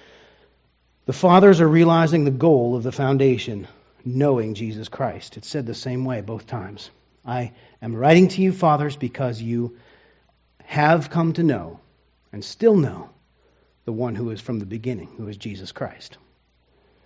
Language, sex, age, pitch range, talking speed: English, male, 40-59, 100-135 Hz, 160 wpm